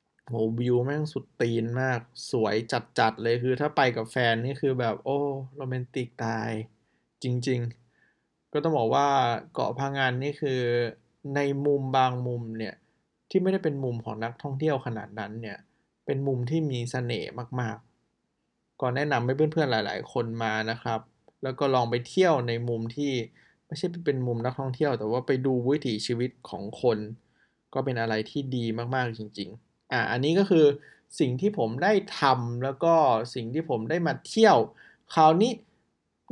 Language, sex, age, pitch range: Thai, male, 20-39, 120-155 Hz